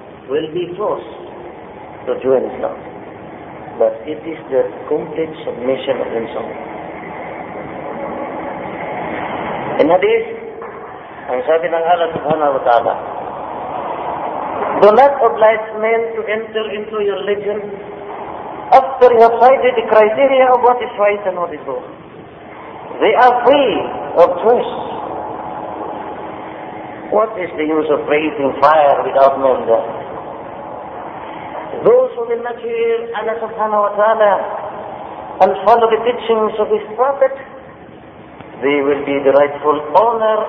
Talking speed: 120 wpm